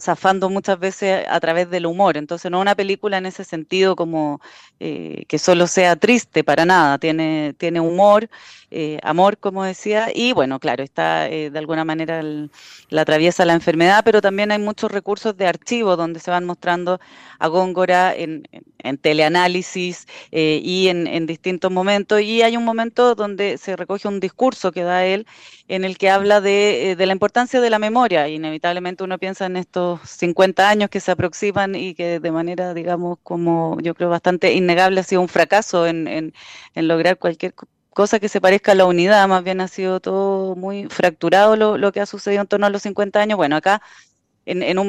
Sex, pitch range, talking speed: female, 170-200 Hz, 195 wpm